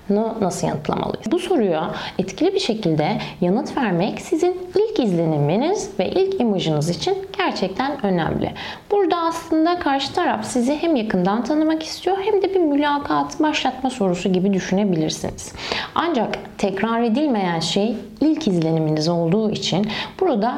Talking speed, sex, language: 130 wpm, female, Turkish